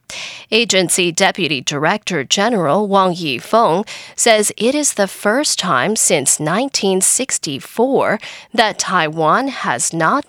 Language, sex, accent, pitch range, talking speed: English, female, American, 180-245 Hz, 105 wpm